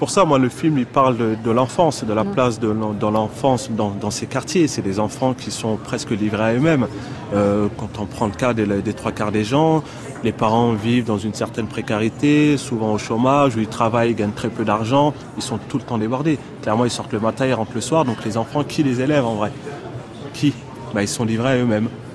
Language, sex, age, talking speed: French, male, 30-49, 245 wpm